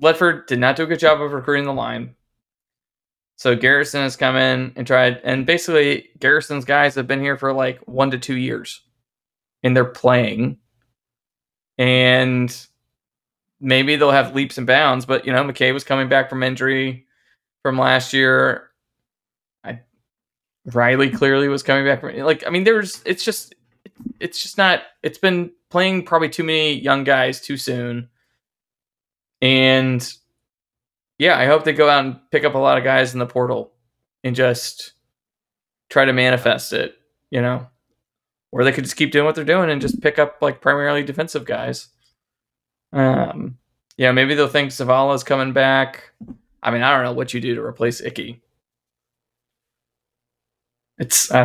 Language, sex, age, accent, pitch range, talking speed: English, male, 20-39, American, 125-145 Hz, 165 wpm